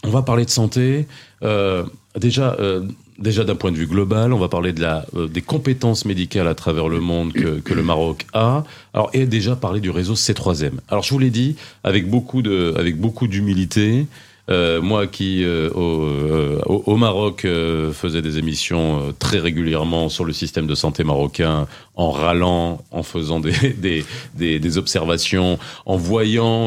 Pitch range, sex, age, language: 80-110 Hz, male, 40-59, French